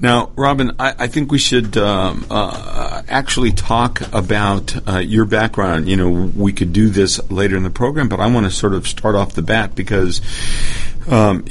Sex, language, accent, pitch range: male, English, American, 90-110 Hz